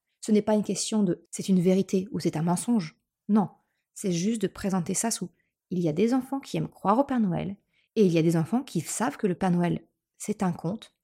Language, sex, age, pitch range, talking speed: French, female, 30-49, 185-240 Hz, 285 wpm